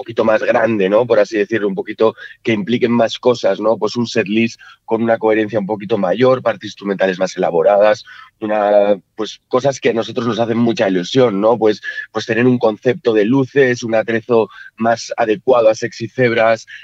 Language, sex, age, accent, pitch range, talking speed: Spanish, male, 30-49, Spanish, 110-130 Hz, 190 wpm